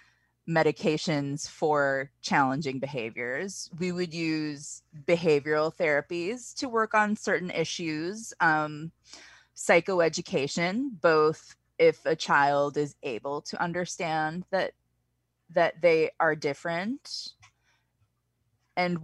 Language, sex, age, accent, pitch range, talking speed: English, female, 20-39, American, 150-185 Hz, 95 wpm